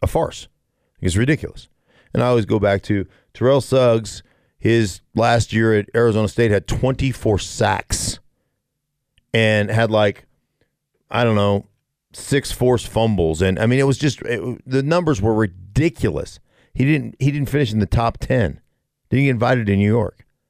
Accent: American